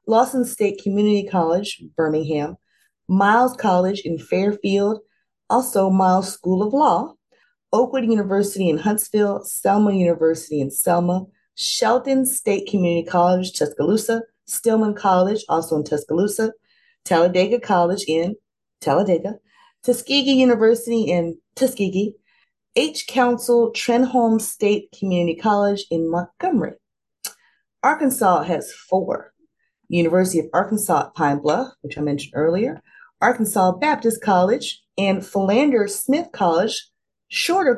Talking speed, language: 110 wpm, English